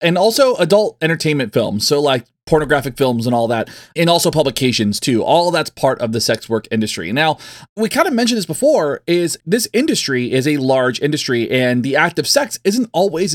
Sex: male